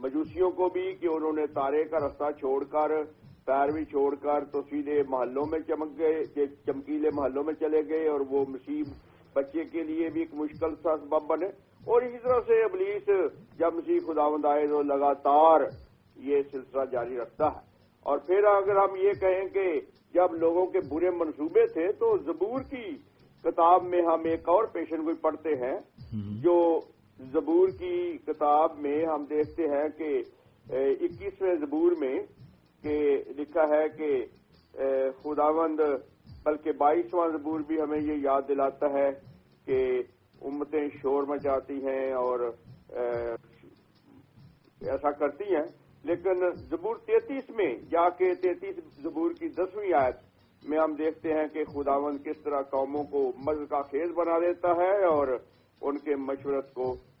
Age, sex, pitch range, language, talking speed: 50-69, male, 145-185 Hz, English, 145 wpm